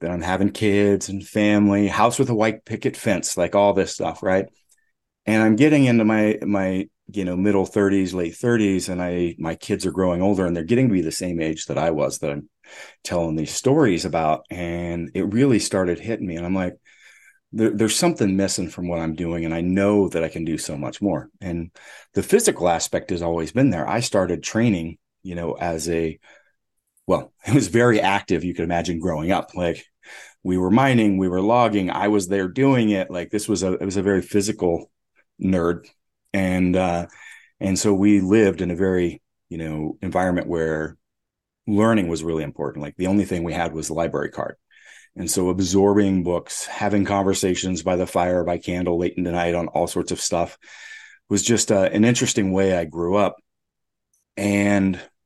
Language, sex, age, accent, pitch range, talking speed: English, male, 40-59, American, 85-105 Hz, 200 wpm